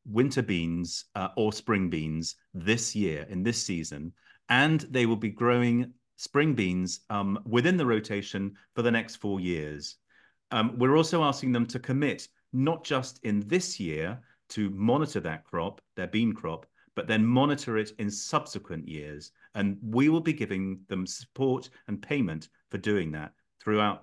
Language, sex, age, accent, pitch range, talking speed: English, male, 40-59, British, 95-125 Hz, 165 wpm